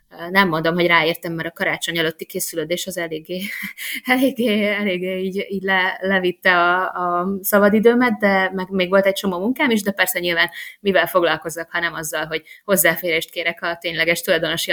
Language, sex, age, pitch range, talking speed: Hungarian, female, 20-39, 160-195 Hz, 165 wpm